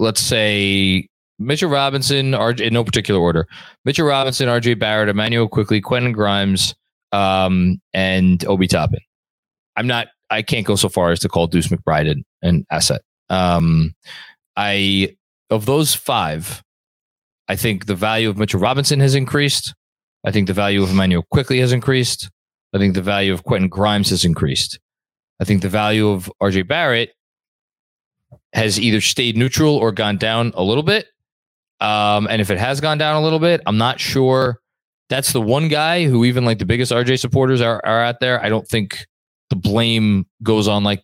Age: 20-39